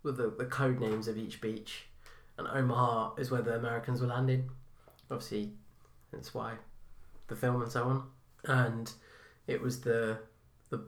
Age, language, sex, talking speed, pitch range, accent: 20-39, English, male, 160 wpm, 110-125 Hz, British